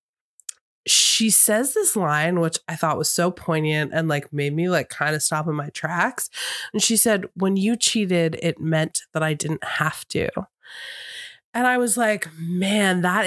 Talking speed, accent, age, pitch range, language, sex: 180 wpm, American, 20-39, 155-200 Hz, English, female